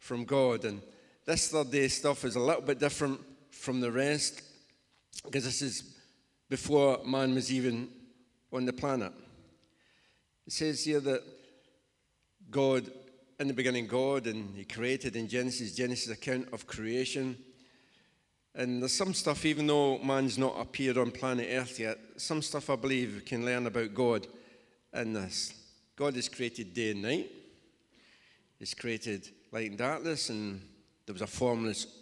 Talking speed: 155 wpm